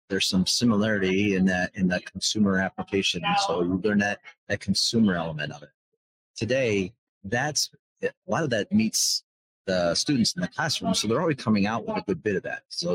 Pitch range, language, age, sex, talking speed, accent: 90-110 Hz, English, 40-59, male, 205 wpm, American